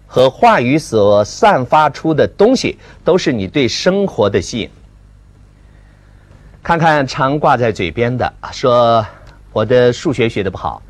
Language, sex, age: Chinese, male, 50-69